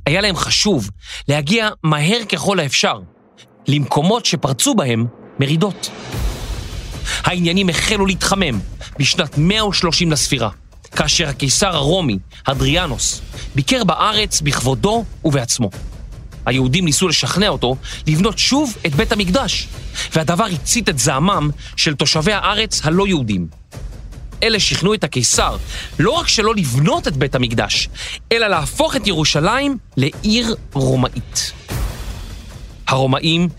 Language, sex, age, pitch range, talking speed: Hebrew, male, 40-59, 120-190 Hz, 110 wpm